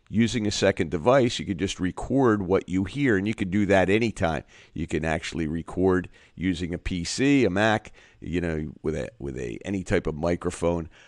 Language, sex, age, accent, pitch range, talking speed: English, male, 50-69, American, 90-110 Hz, 195 wpm